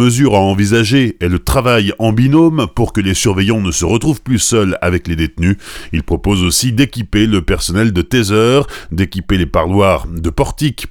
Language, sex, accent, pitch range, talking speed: French, male, French, 90-120 Hz, 180 wpm